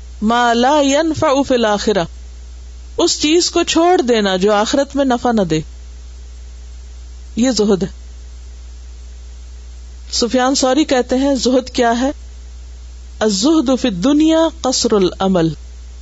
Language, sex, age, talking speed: Urdu, female, 50-69, 95 wpm